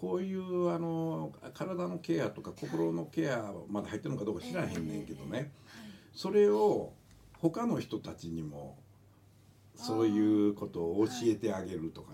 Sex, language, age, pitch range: male, Japanese, 60-79, 100-160 Hz